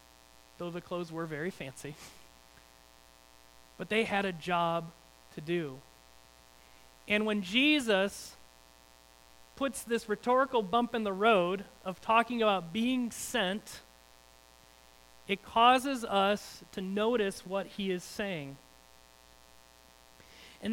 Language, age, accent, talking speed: English, 40-59, American, 110 wpm